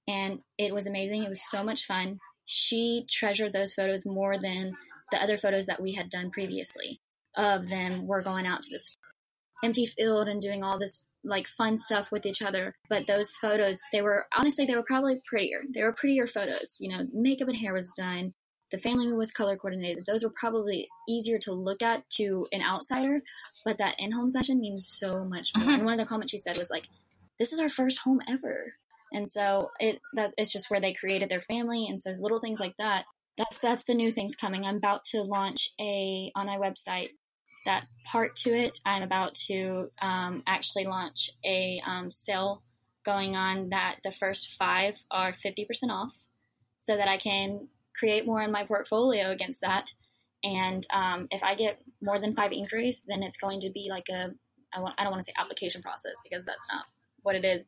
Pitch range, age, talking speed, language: 195-225 Hz, 10-29, 205 wpm, English